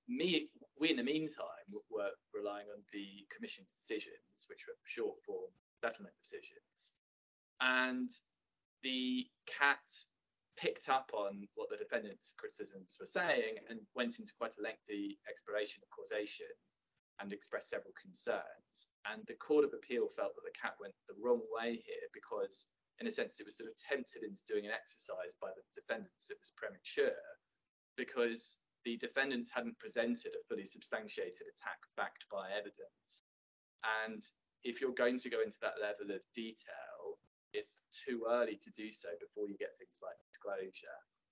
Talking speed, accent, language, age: 155 wpm, British, English, 20-39